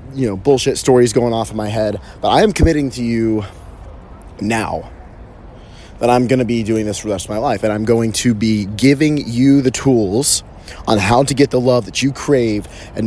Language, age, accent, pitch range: English, 30-49, American, 100-125 Hz